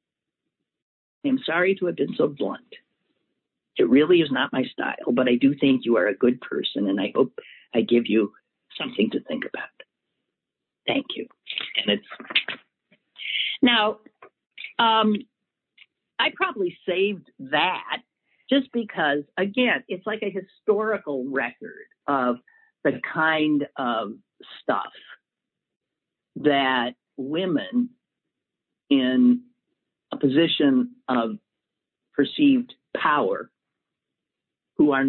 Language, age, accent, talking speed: English, 50-69, American, 110 wpm